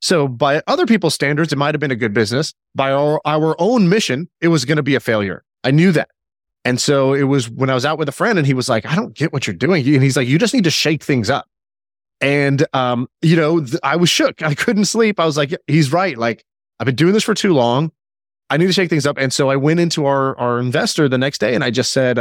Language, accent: English, American